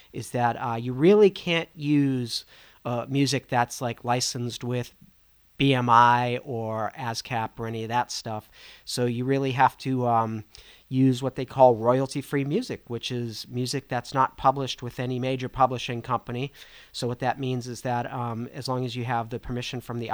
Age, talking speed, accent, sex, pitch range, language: 40-59, 180 wpm, American, male, 120-140 Hz, English